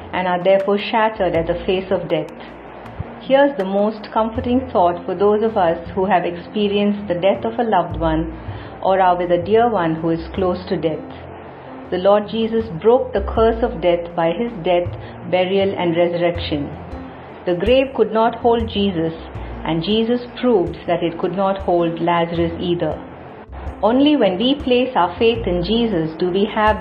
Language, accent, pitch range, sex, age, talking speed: English, Indian, 170-210 Hz, female, 50-69, 175 wpm